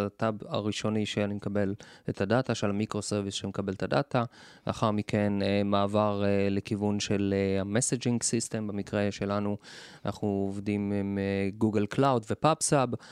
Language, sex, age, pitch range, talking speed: Hebrew, male, 20-39, 105-125 Hz, 130 wpm